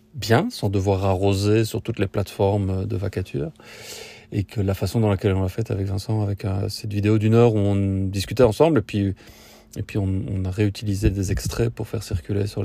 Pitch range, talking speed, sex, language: 100-115 Hz, 215 wpm, male, French